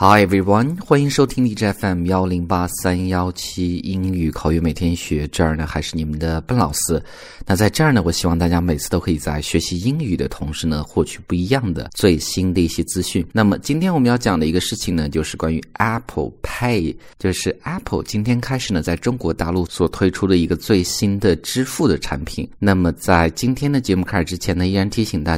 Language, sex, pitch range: Chinese, male, 80-105 Hz